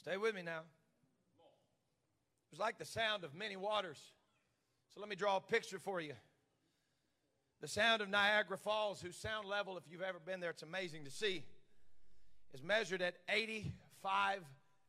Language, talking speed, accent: English, 165 wpm, American